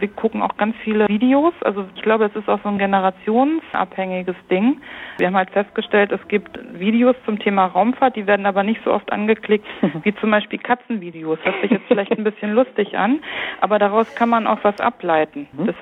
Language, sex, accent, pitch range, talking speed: German, female, German, 185-235 Hz, 205 wpm